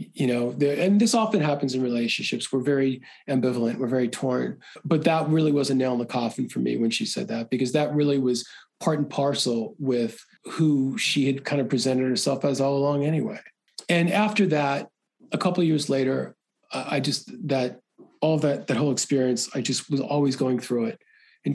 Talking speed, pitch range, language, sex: 200 wpm, 135-225 Hz, English, male